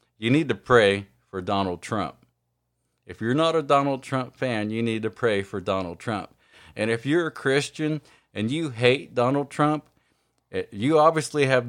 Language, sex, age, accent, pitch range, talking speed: English, male, 50-69, American, 100-125 Hz, 180 wpm